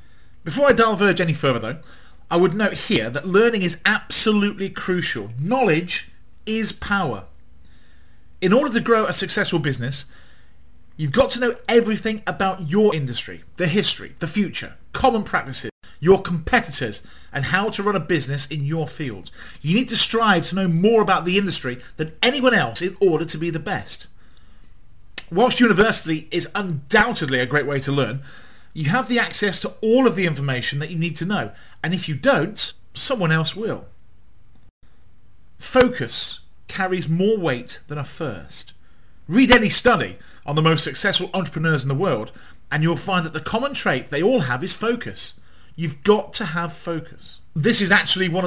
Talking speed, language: 170 wpm, English